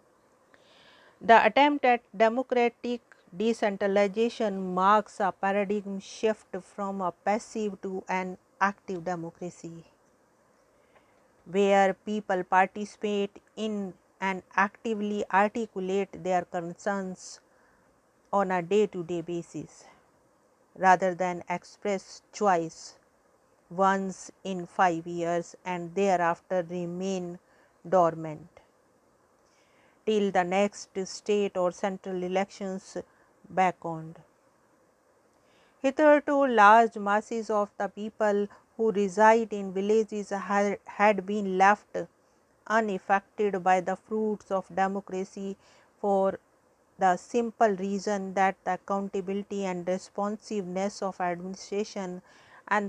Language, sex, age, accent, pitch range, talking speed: English, female, 50-69, Indian, 185-210 Hz, 90 wpm